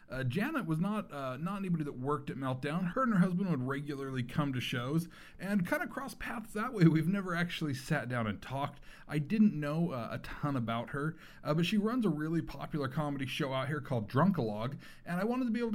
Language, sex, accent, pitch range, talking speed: English, male, American, 130-185 Hz, 230 wpm